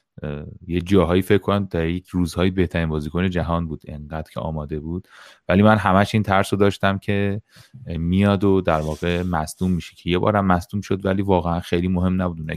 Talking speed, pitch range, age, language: 185 wpm, 80-95 Hz, 30-49, Persian